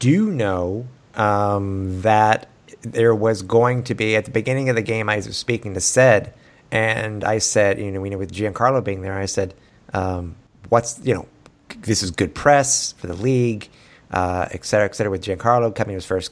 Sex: male